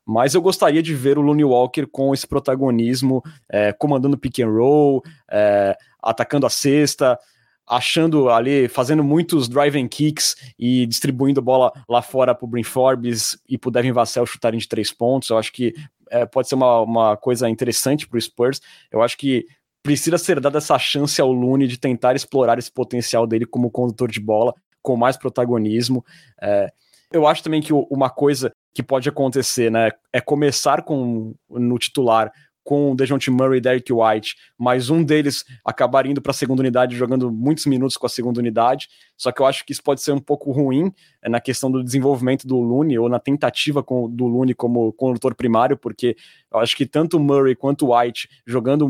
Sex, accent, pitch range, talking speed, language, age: male, Brazilian, 120-140 Hz, 190 wpm, Portuguese, 20-39